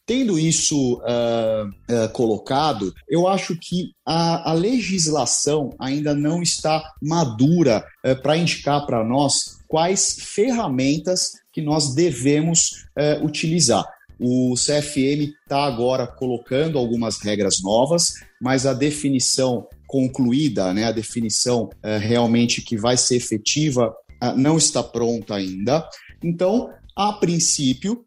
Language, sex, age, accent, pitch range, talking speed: Portuguese, male, 30-49, Brazilian, 120-165 Hz, 105 wpm